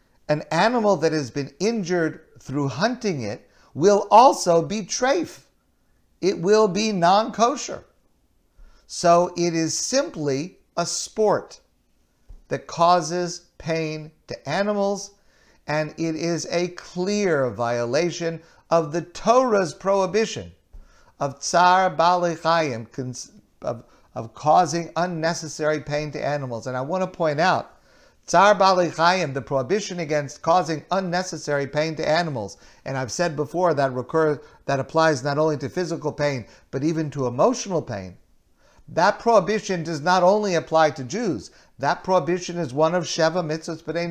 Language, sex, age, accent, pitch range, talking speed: English, male, 50-69, American, 145-180 Hz, 135 wpm